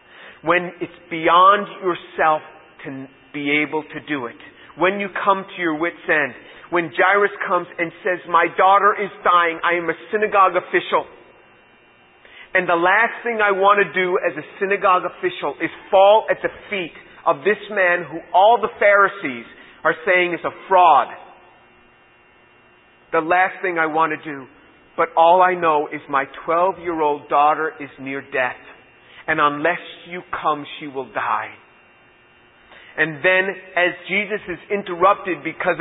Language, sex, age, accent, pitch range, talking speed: English, male, 40-59, American, 150-180 Hz, 155 wpm